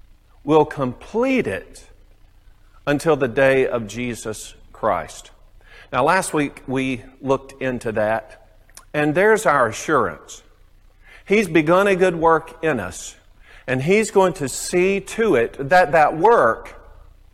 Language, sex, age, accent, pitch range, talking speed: English, male, 50-69, American, 120-165 Hz, 130 wpm